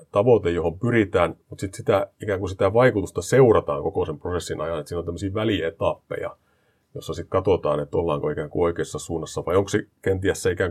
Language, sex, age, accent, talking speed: Finnish, male, 30-49, native, 195 wpm